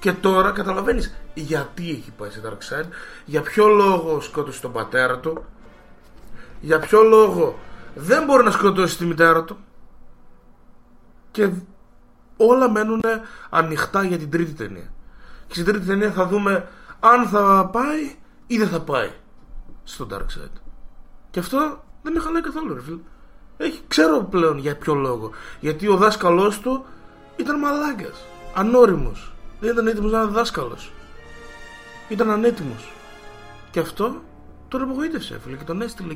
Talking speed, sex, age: 140 wpm, male, 20-39